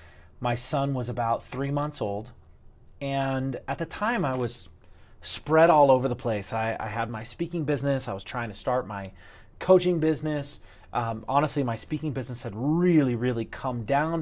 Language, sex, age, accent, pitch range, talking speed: English, male, 30-49, American, 110-140 Hz, 175 wpm